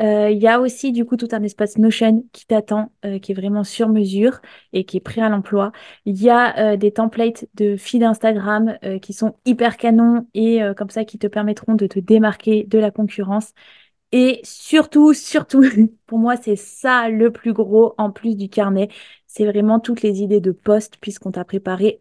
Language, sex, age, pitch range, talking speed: French, female, 20-39, 200-230 Hz, 205 wpm